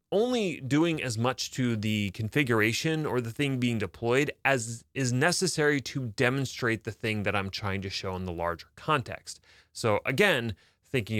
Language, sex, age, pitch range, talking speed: English, male, 30-49, 100-135 Hz, 165 wpm